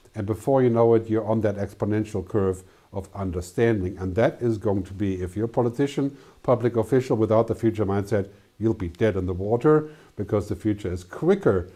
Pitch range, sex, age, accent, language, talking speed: 100-125 Hz, male, 50-69, German, English, 200 wpm